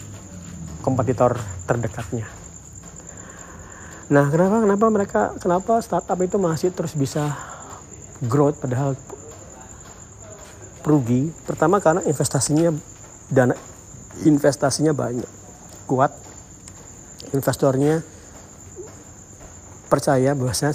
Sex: male